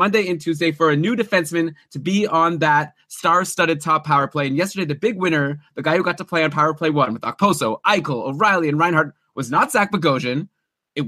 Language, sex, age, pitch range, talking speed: English, male, 20-39, 165-225 Hz, 220 wpm